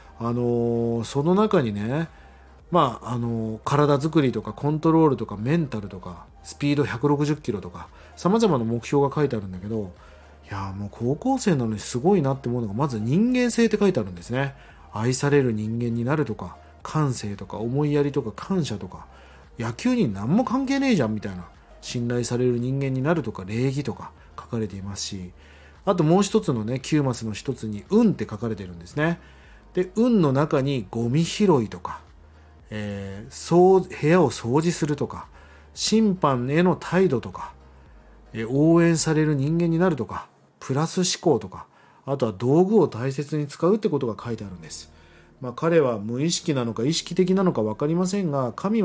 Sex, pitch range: male, 105-170 Hz